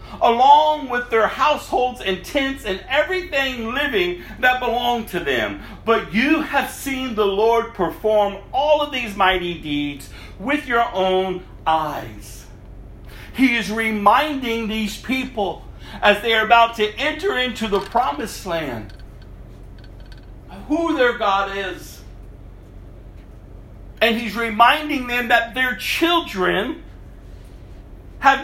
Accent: American